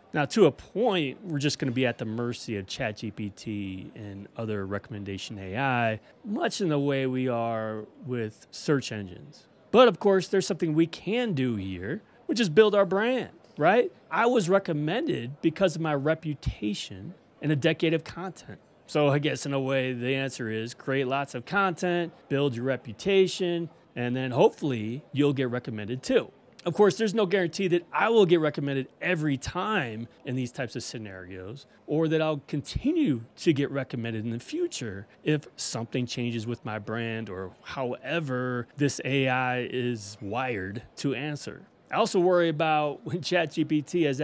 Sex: male